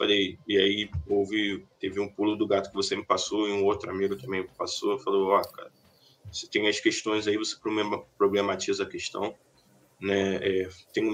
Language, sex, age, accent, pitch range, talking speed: English, male, 20-39, Brazilian, 95-110 Hz, 195 wpm